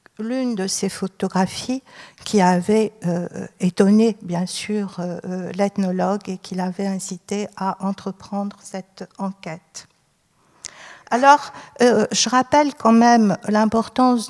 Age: 60-79